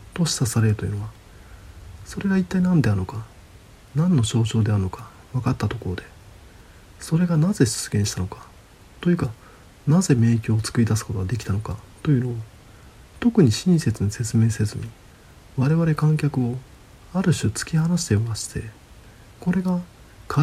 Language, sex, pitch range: Japanese, male, 100-145 Hz